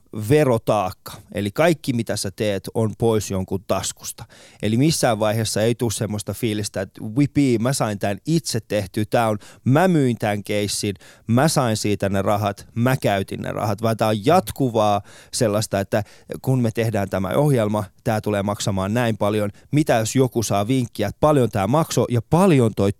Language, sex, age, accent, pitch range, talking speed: Finnish, male, 20-39, native, 105-150 Hz, 165 wpm